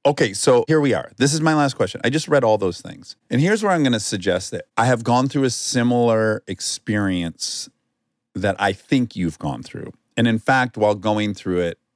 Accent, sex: American, male